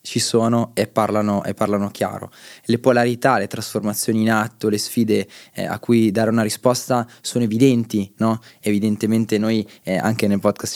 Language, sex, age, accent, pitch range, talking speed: Italian, male, 20-39, native, 105-120 Hz, 165 wpm